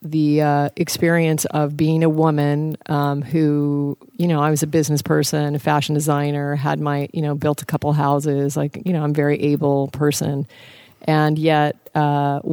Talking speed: 175 wpm